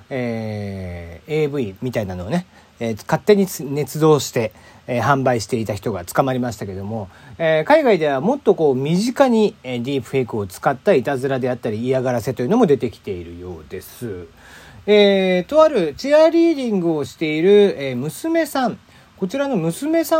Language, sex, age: Japanese, male, 40-59